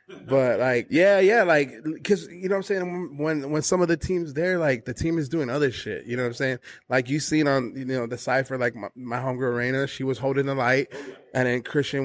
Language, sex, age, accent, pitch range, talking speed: English, male, 20-39, American, 125-150 Hz, 255 wpm